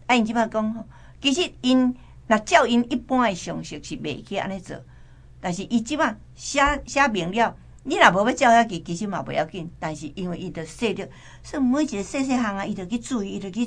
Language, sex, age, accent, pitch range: Chinese, female, 60-79, American, 160-240 Hz